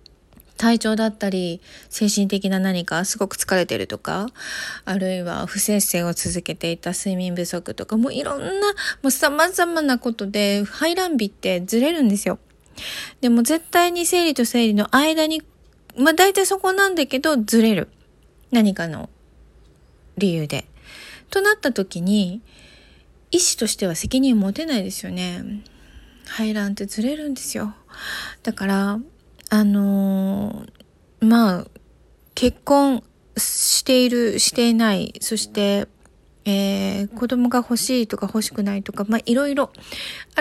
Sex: female